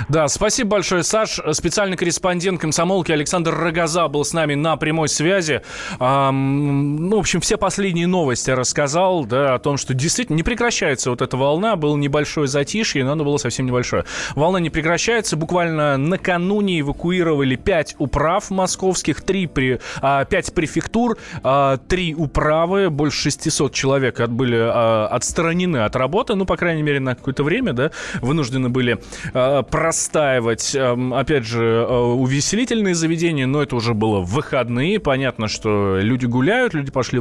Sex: male